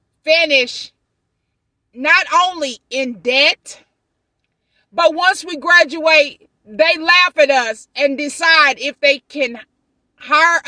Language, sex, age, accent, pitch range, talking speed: English, female, 40-59, American, 275-335 Hz, 105 wpm